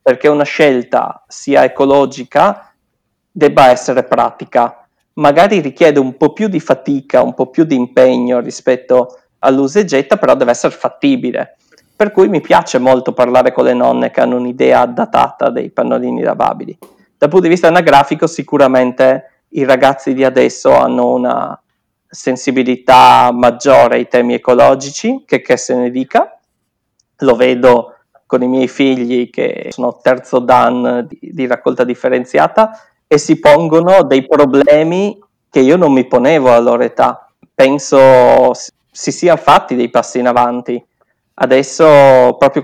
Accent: native